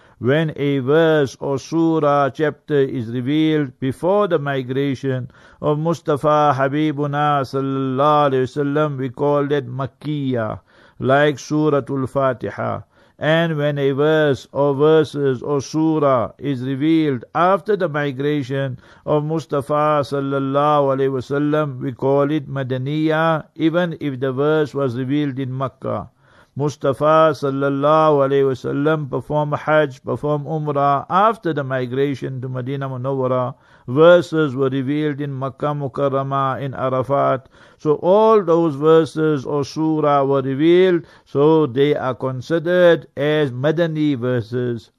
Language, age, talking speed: English, 60-79, 120 wpm